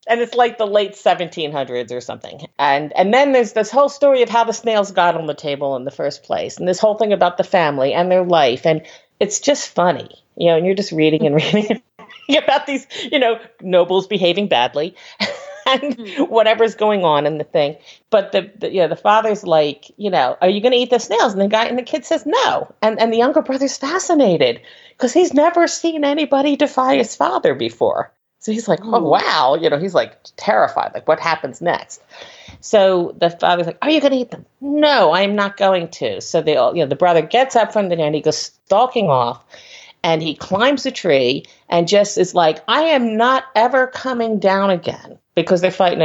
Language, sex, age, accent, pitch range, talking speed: English, female, 50-69, American, 170-255 Hz, 220 wpm